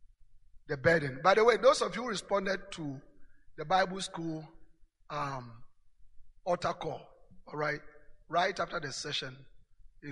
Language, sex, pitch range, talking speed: English, male, 140-180 Hz, 135 wpm